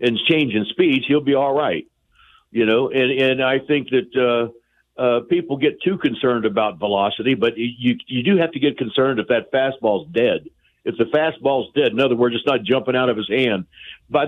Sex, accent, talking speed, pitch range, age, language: male, American, 205 wpm, 115-165 Hz, 60-79, English